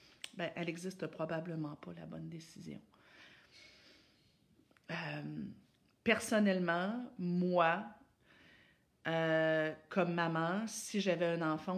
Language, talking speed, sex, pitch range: French, 90 wpm, female, 155-175 Hz